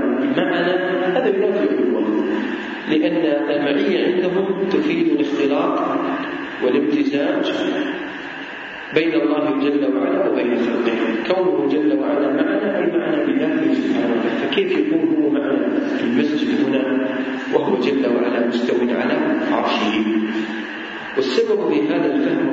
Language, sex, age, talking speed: English, male, 40-59, 100 wpm